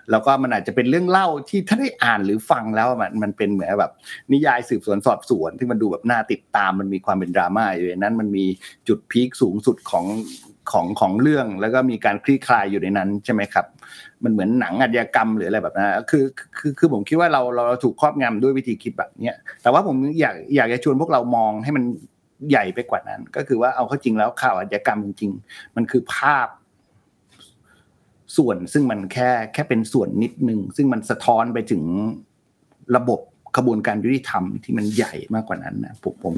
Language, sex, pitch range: Thai, male, 110-135 Hz